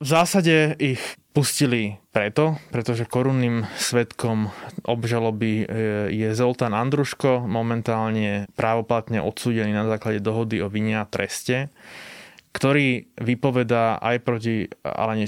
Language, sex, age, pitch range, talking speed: Slovak, male, 20-39, 110-120 Hz, 100 wpm